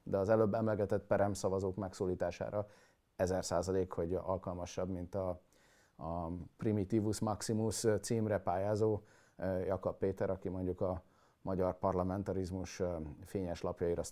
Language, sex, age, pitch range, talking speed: Hungarian, male, 30-49, 95-110 Hz, 105 wpm